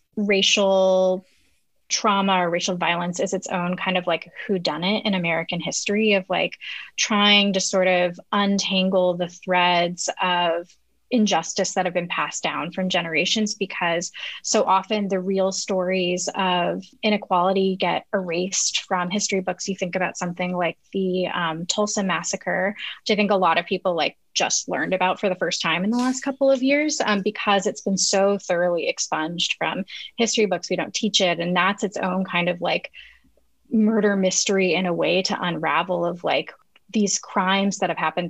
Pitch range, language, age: 180-205 Hz, English, 20-39